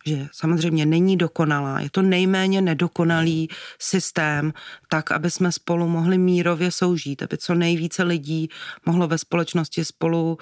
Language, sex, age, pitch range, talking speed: Czech, female, 30-49, 160-180 Hz, 140 wpm